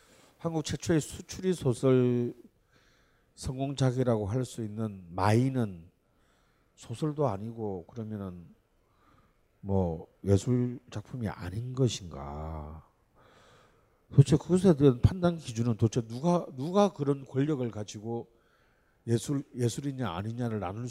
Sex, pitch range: male, 110-155 Hz